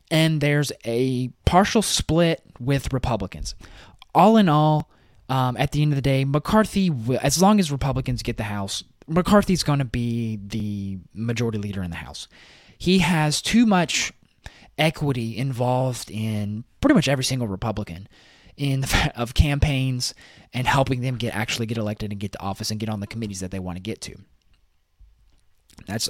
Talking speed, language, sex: 170 wpm, English, male